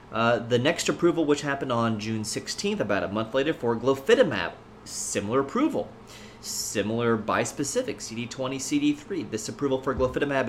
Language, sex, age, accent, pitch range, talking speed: English, male, 30-49, American, 105-140 Hz, 145 wpm